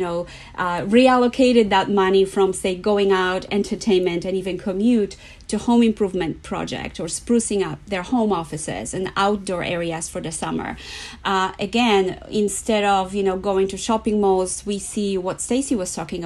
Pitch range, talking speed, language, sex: 190-235 Hz, 165 wpm, English, female